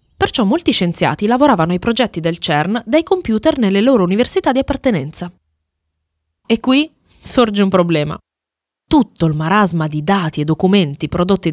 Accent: native